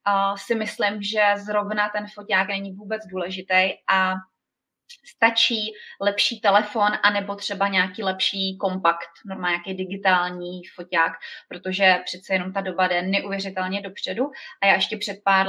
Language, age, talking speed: Czech, 20-39, 135 wpm